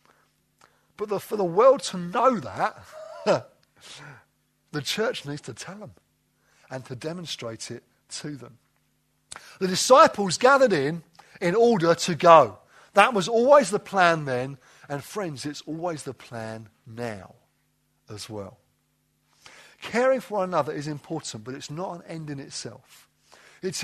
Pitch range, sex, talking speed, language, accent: 145-200 Hz, male, 140 wpm, English, British